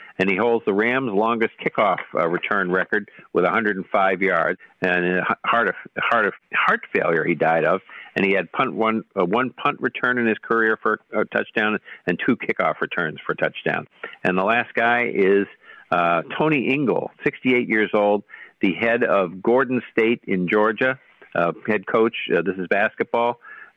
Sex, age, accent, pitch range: male, 50-69, American, 95-110 Hz